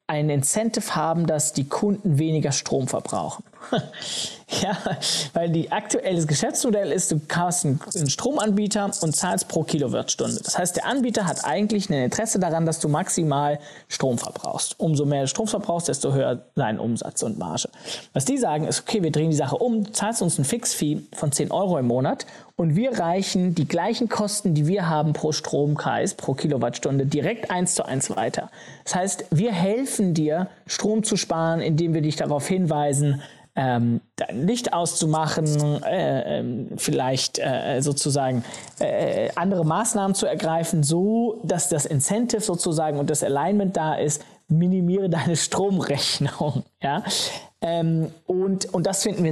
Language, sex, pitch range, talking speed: German, male, 150-195 Hz, 160 wpm